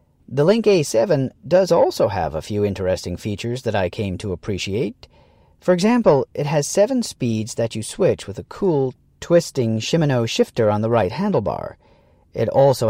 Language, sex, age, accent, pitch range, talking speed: English, male, 40-59, American, 110-140 Hz, 170 wpm